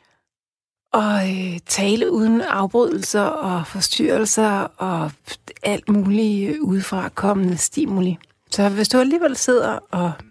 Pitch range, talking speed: 180-240 Hz, 105 wpm